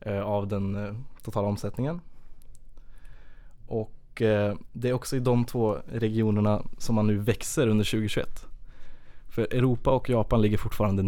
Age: 20-39